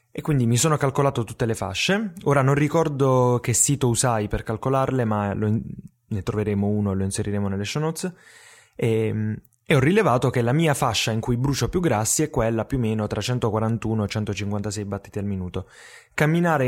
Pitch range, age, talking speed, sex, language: 105-130 Hz, 20-39, 195 wpm, male, Italian